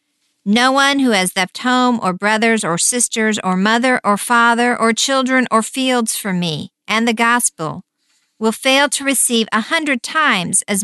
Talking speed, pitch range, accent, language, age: 170 wpm, 210-280 Hz, American, English, 50-69